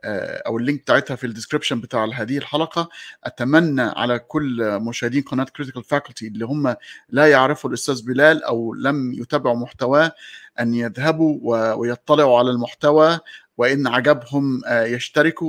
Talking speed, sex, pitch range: 130 wpm, male, 120-155 Hz